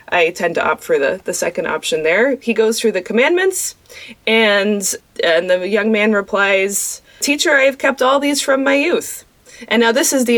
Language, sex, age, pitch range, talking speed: English, female, 20-39, 200-270 Hz, 195 wpm